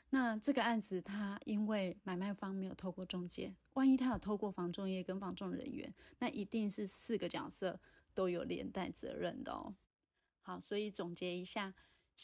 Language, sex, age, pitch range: Chinese, female, 30-49, 185-220 Hz